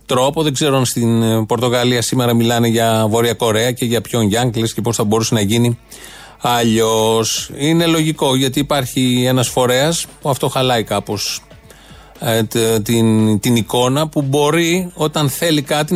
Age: 30-49